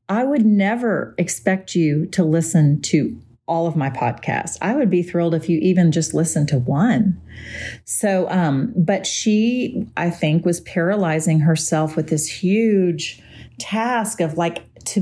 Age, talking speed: 40-59, 155 wpm